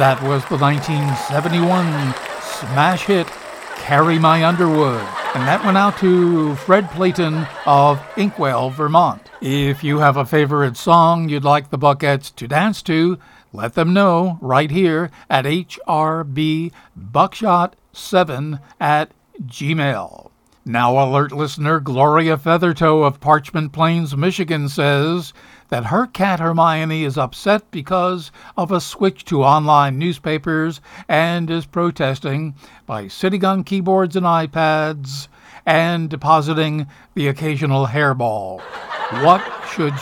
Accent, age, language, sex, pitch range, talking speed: American, 60-79, English, male, 145-175 Hz, 120 wpm